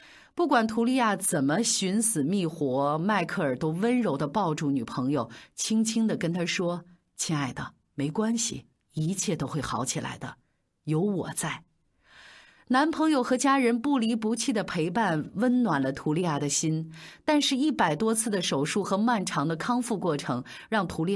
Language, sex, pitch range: Chinese, female, 160-245 Hz